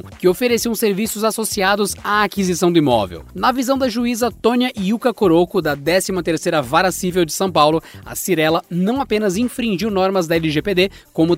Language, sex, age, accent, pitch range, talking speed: Portuguese, male, 20-39, Brazilian, 150-190 Hz, 165 wpm